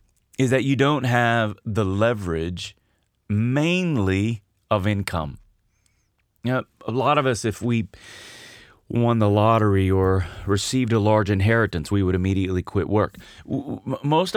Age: 30-49